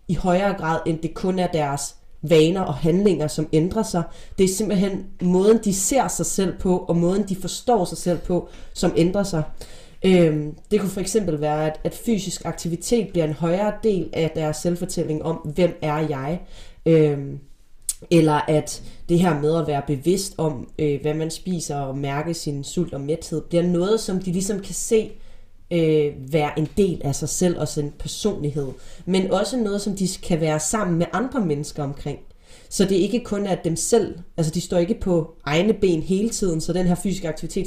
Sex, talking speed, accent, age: female, 195 wpm, native, 30-49